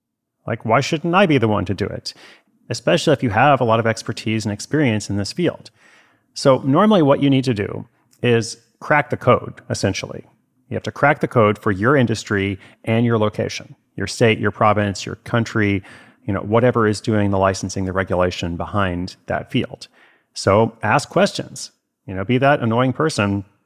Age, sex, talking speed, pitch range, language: 30-49, male, 190 wpm, 105-130 Hz, English